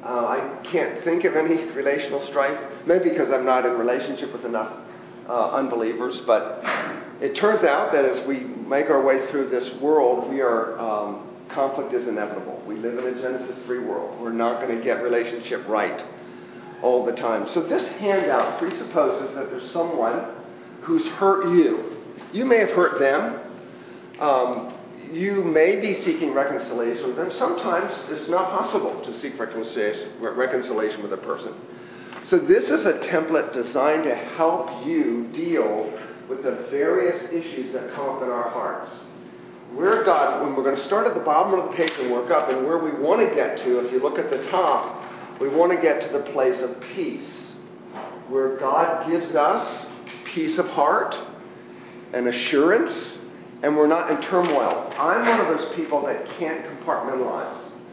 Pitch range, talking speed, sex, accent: 125-190 Hz, 175 wpm, male, American